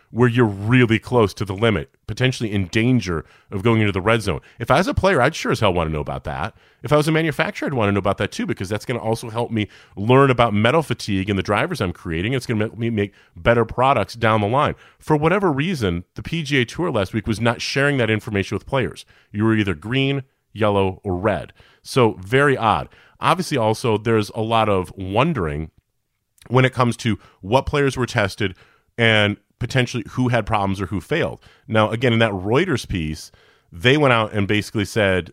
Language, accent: English, American